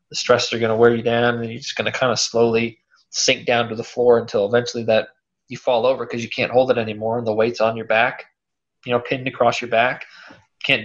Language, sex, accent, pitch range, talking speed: English, male, American, 115-125 Hz, 255 wpm